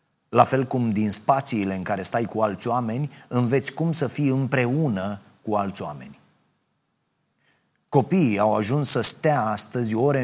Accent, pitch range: native, 110-140 Hz